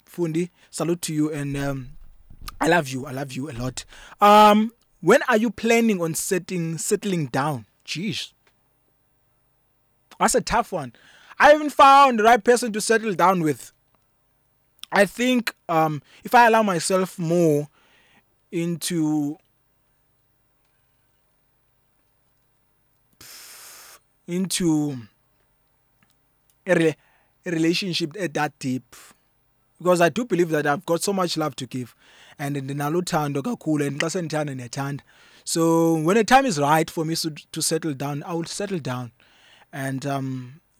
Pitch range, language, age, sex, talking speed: 135-185 Hz, English, 20-39, male, 140 wpm